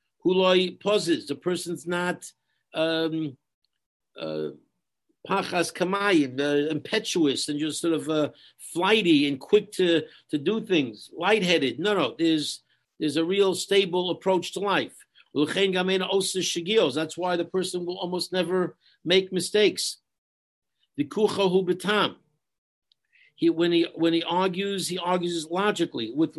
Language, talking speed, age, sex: English, 125 wpm, 60-79, male